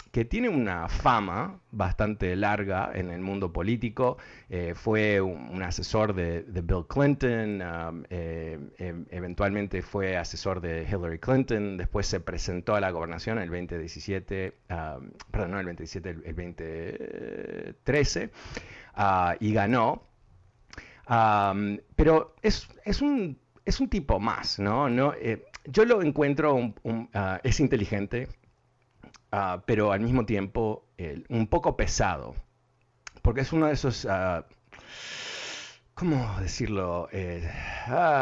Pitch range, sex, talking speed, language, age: 90-125 Hz, male, 135 wpm, Spanish, 50-69